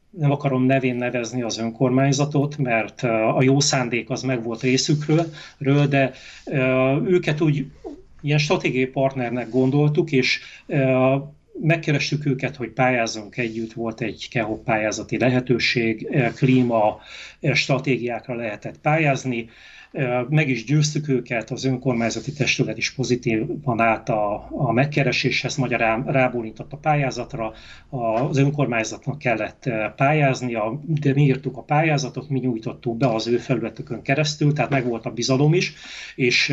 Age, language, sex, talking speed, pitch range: 30-49, Hungarian, male, 125 wpm, 120-145 Hz